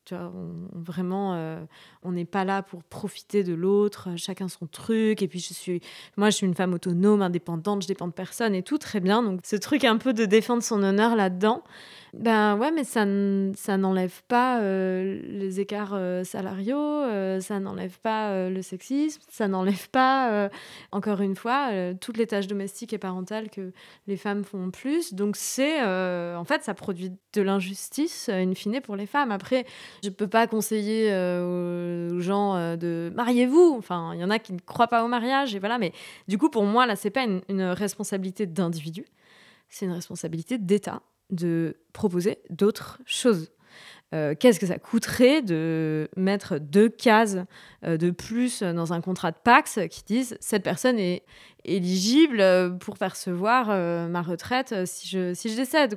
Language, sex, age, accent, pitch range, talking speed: French, female, 20-39, French, 185-230 Hz, 190 wpm